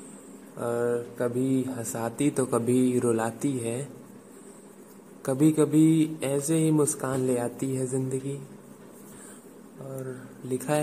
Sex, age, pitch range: male, 20-39, 120-150 Hz